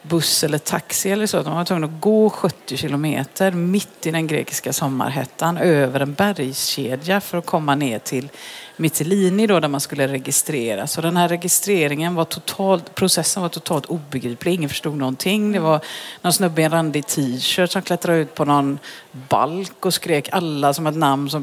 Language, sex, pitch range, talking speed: Swedish, female, 145-195 Hz, 175 wpm